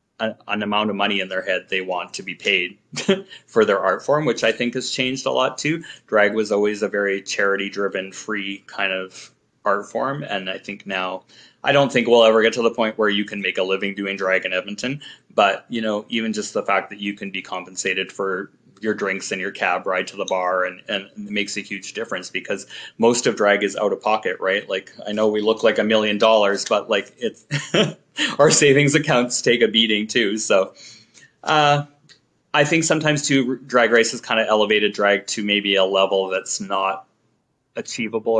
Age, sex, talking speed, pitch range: 20-39, male, 215 wpm, 100-120 Hz